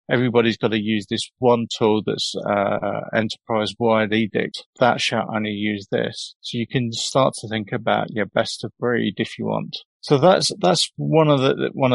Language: English